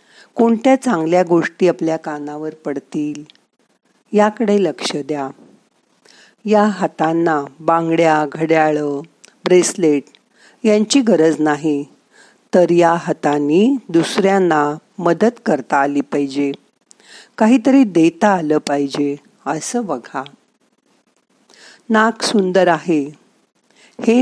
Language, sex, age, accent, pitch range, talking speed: Marathi, female, 50-69, native, 155-210 Hz, 90 wpm